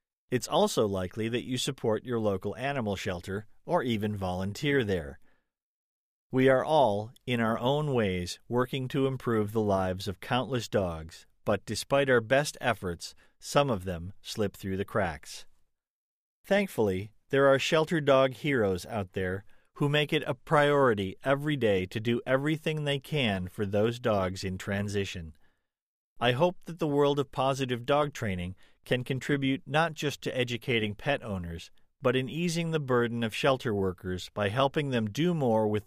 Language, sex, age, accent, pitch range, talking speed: English, male, 40-59, American, 100-140 Hz, 160 wpm